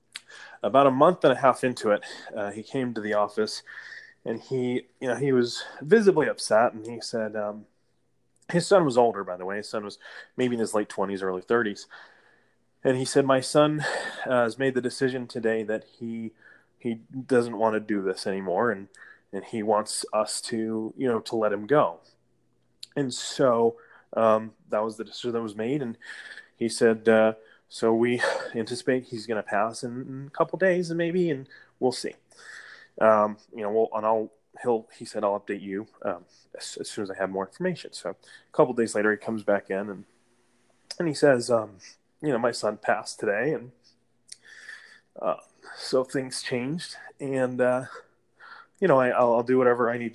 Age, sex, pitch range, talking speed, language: 20-39, male, 105-130 Hz, 195 wpm, English